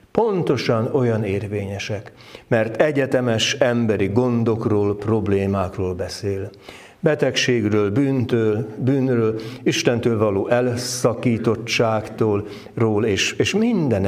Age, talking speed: 60-79, 80 wpm